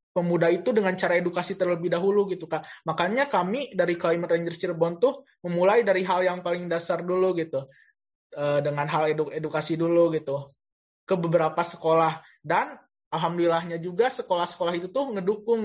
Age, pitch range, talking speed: 20-39, 165-195 Hz, 155 wpm